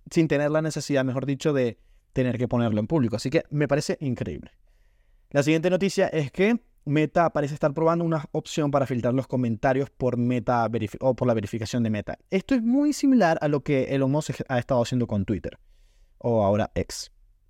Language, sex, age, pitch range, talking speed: Spanish, male, 20-39, 115-150 Hz, 195 wpm